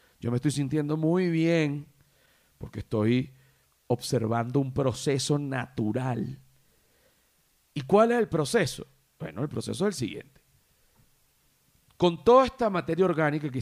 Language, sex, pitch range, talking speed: Spanish, male, 125-160 Hz, 130 wpm